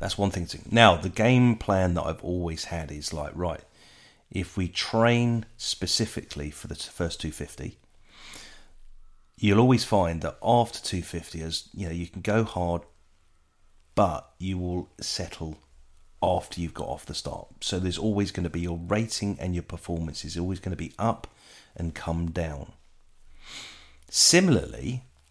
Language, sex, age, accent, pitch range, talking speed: English, male, 40-59, British, 85-105 Hz, 160 wpm